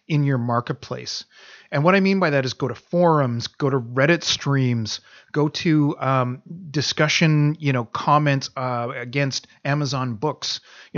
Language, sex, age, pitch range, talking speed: English, male, 30-49, 130-150 Hz, 160 wpm